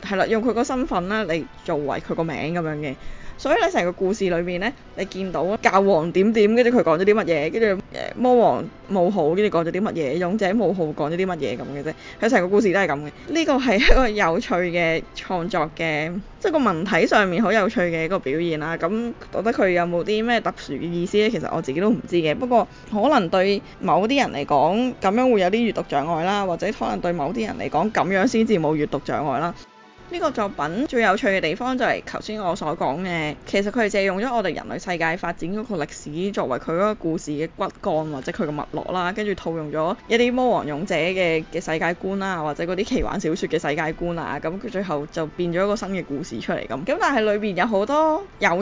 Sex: female